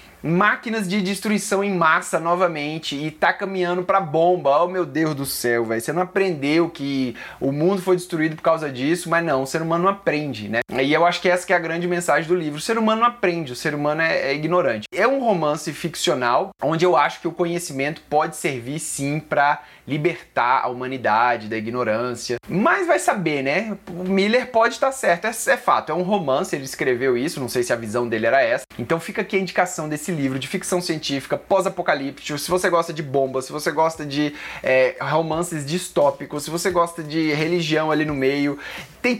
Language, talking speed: Portuguese, 200 wpm